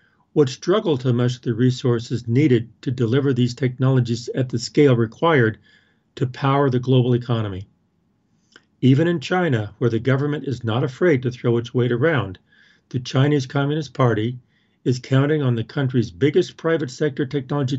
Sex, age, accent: male, 50-69, American